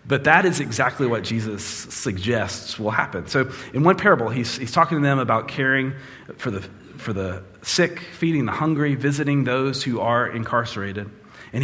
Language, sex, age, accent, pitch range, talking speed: English, male, 30-49, American, 105-135 Hz, 170 wpm